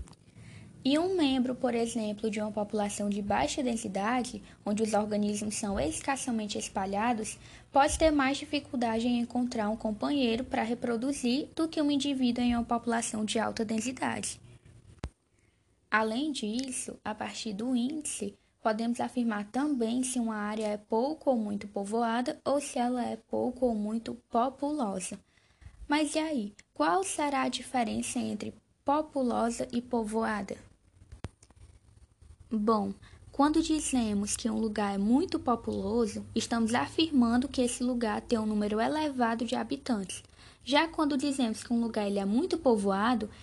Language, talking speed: Portuguese, 140 wpm